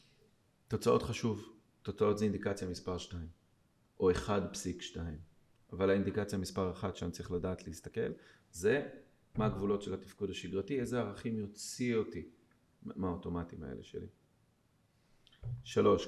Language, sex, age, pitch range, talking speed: Hebrew, male, 30-49, 90-110 Hz, 120 wpm